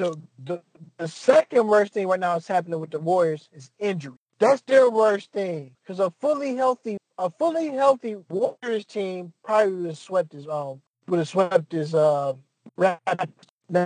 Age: 20-39